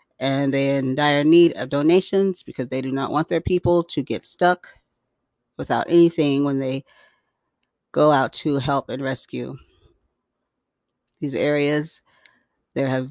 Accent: American